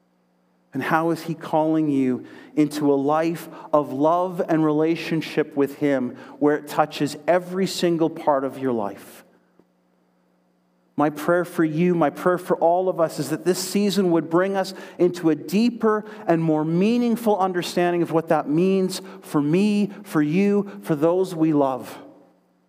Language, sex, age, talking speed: English, male, 40-59, 160 wpm